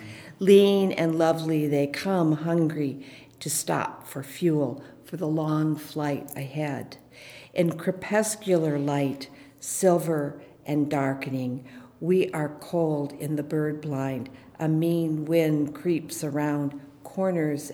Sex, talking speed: female, 115 wpm